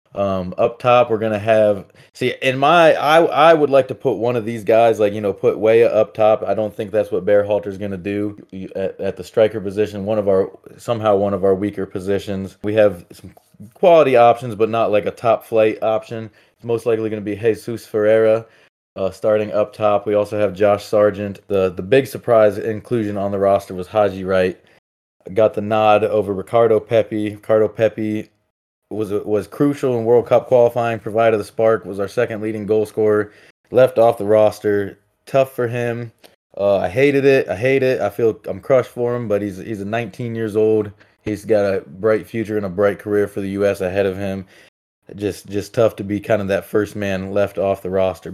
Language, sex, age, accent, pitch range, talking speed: English, male, 20-39, American, 100-115 Hz, 210 wpm